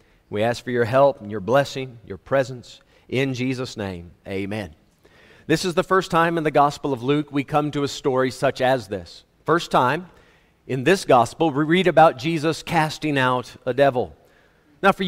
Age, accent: 40-59, American